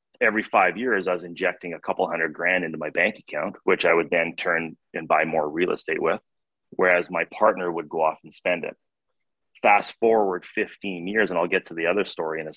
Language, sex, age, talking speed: English, male, 30-49, 225 wpm